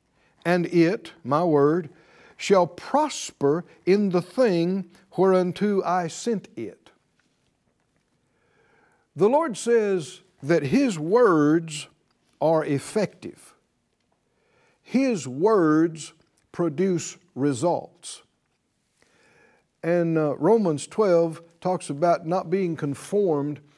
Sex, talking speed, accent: male, 85 wpm, American